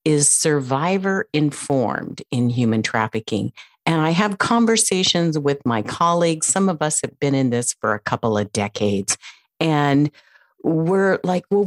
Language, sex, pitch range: English, female, 125-170 Hz